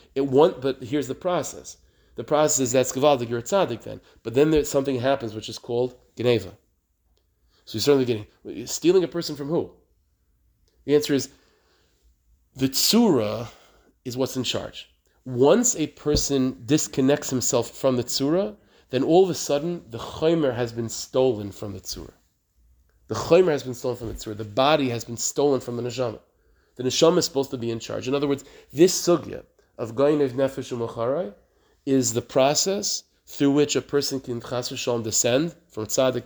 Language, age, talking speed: English, 30-49, 170 wpm